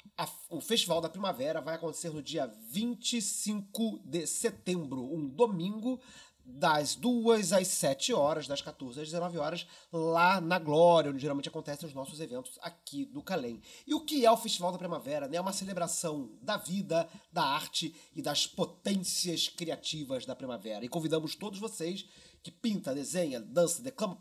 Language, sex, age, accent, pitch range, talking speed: Portuguese, male, 30-49, Brazilian, 160-215 Hz, 165 wpm